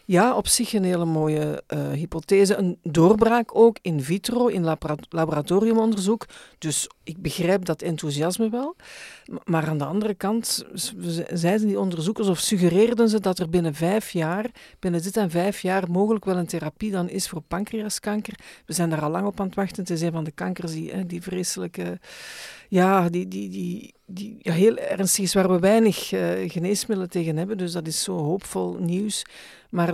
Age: 50-69